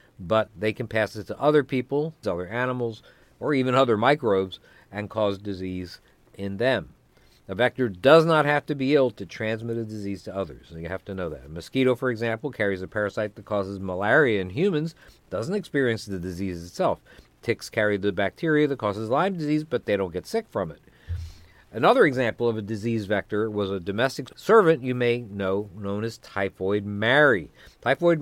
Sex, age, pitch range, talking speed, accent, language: male, 50-69, 100-130 Hz, 185 wpm, American, English